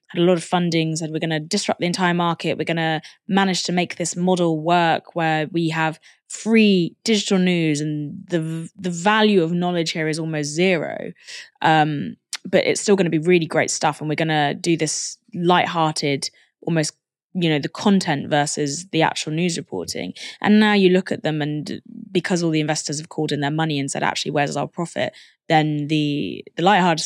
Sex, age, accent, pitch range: female, 20-39, British, 155-190 Hz